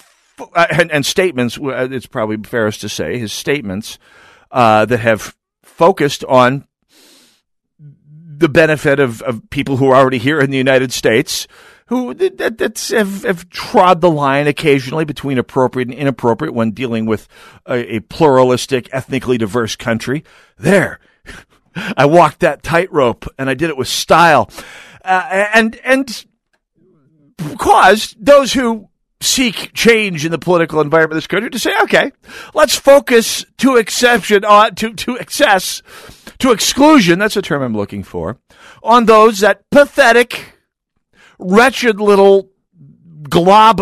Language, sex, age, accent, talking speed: English, male, 50-69, American, 140 wpm